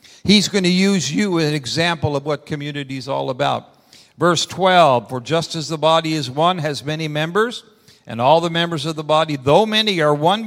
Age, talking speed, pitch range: 60-79, 210 wpm, 135-170 Hz